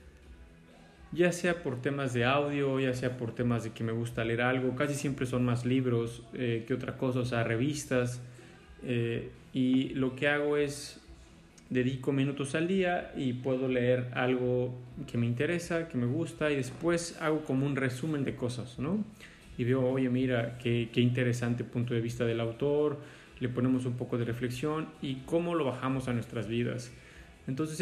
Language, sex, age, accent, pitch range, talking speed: Spanish, male, 30-49, Mexican, 120-145 Hz, 180 wpm